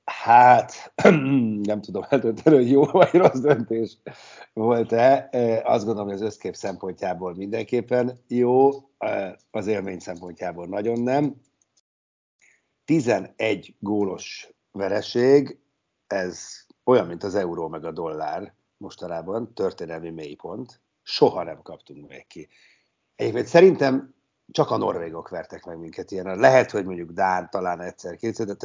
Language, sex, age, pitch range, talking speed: Hungarian, male, 60-79, 90-125 Hz, 120 wpm